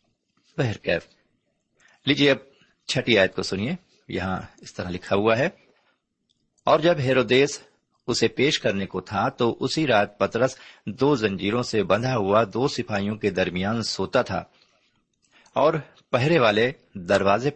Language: Urdu